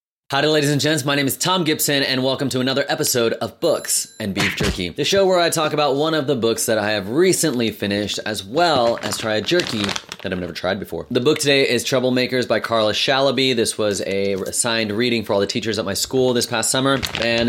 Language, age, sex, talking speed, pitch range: English, 30-49, male, 240 wpm, 100-130 Hz